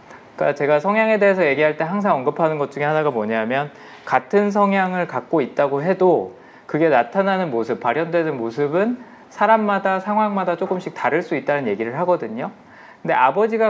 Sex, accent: male, native